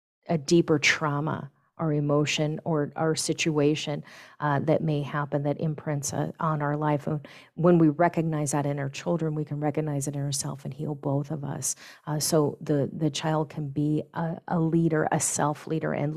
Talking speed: 185 wpm